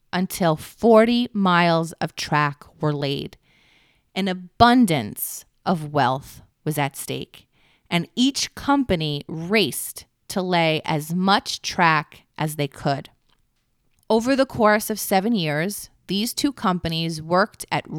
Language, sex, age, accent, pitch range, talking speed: English, female, 30-49, American, 155-200 Hz, 125 wpm